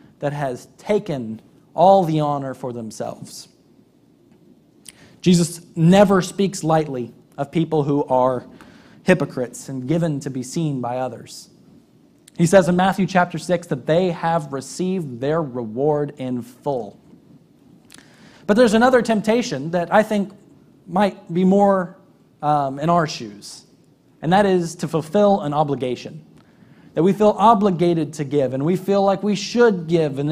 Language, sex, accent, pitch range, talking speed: English, male, American, 145-195 Hz, 145 wpm